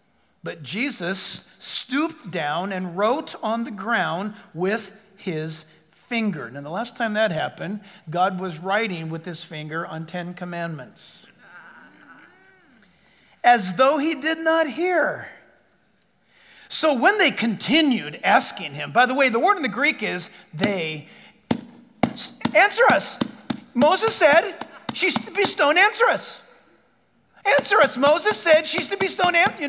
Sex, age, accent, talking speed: male, 50-69, American, 135 wpm